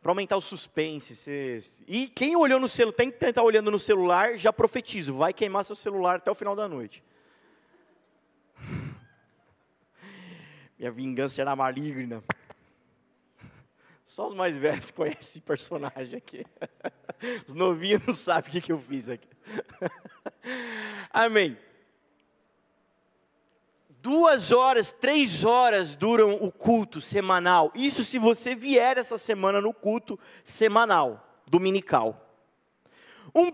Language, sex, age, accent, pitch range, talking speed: Portuguese, male, 20-39, Brazilian, 180-270 Hz, 120 wpm